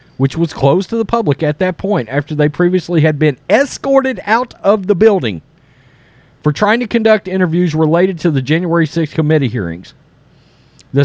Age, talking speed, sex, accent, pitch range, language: 40-59, 175 wpm, male, American, 130-185 Hz, English